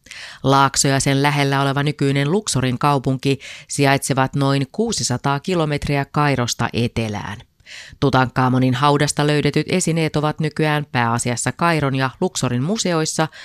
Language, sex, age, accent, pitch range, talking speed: Finnish, female, 30-49, native, 125-155 Hz, 110 wpm